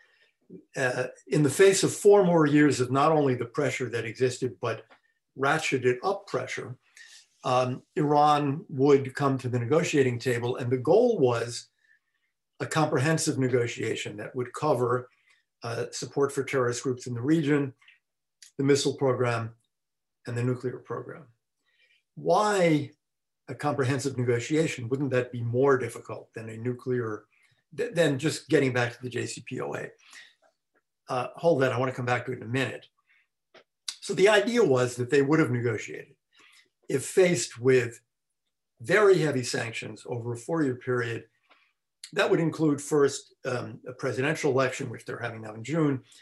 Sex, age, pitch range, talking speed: male, 50-69, 125-155 Hz, 150 wpm